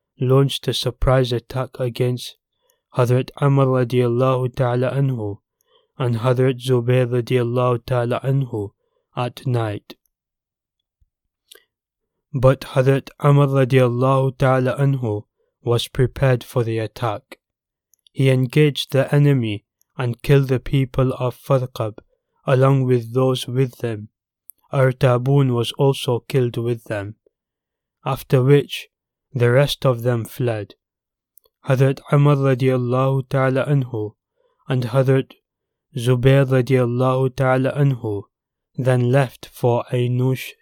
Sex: male